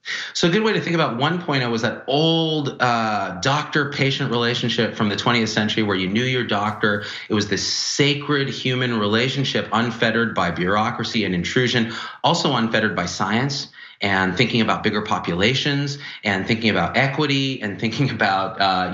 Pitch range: 105-140 Hz